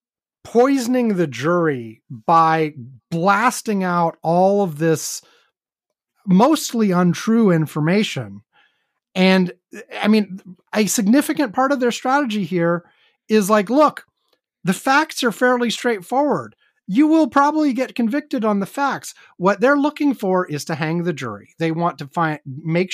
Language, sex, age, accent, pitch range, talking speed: English, male, 30-49, American, 165-240 Hz, 135 wpm